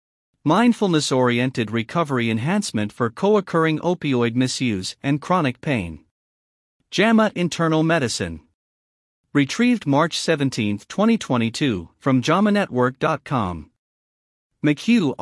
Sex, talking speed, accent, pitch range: male, 80 wpm, American, 115-170 Hz